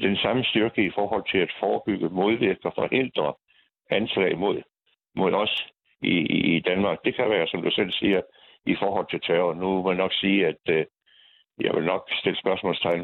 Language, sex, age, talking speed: Danish, male, 60-79, 185 wpm